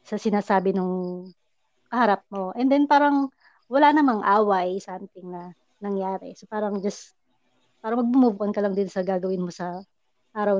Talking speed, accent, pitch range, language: 155 wpm, native, 195-230 Hz, Filipino